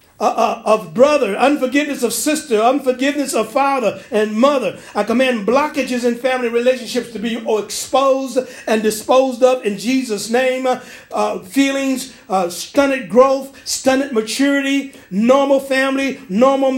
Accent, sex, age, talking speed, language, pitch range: American, male, 50-69, 130 wpm, English, 230-270 Hz